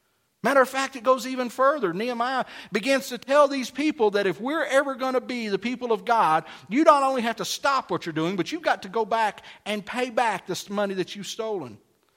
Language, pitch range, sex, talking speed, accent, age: English, 160-260 Hz, male, 230 wpm, American, 50-69